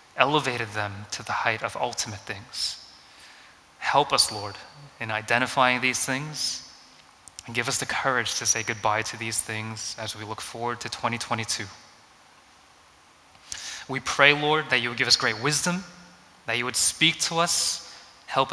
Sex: male